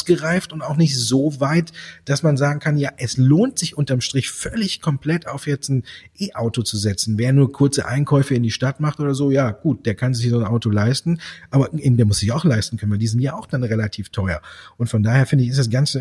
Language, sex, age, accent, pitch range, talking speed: German, male, 40-59, German, 115-150 Hz, 245 wpm